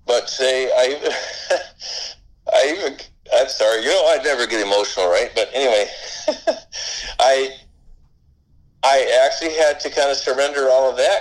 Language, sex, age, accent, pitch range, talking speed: English, male, 50-69, American, 105-135 Hz, 145 wpm